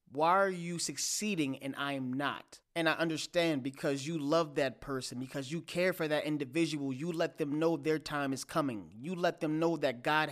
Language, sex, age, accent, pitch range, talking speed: English, male, 30-49, American, 150-185 Hz, 210 wpm